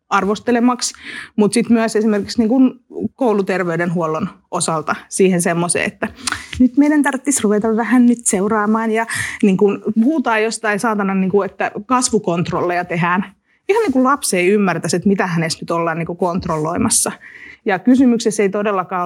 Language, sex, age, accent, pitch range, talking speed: Finnish, female, 30-49, native, 185-245 Hz, 125 wpm